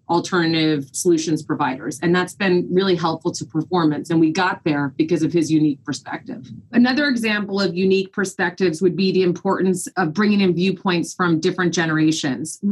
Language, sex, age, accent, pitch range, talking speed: English, female, 30-49, American, 160-185 Hz, 165 wpm